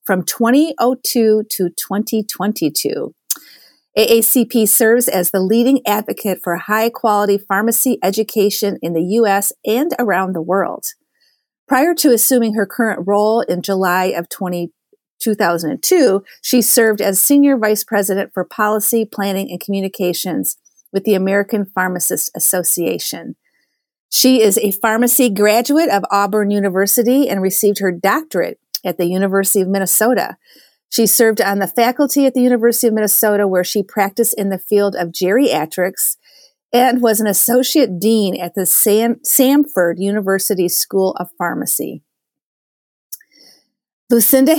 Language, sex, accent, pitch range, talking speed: English, female, American, 195-240 Hz, 130 wpm